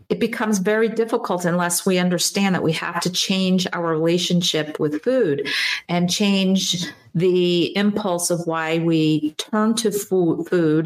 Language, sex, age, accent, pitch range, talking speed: English, female, 50-69, American, 165-200 Hz, 145 wpm